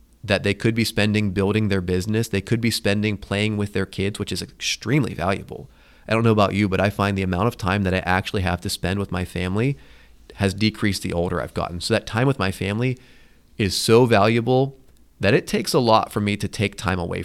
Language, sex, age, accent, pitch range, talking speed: English, male, 30-49, American, 95-125 Hz, 235 wpm